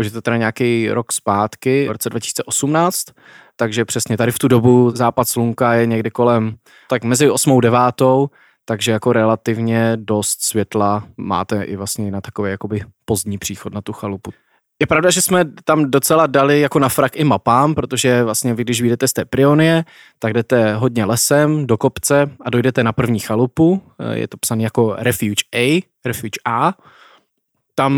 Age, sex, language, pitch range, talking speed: 20-39, male, Czech, 105-125 Hz, 175 wpm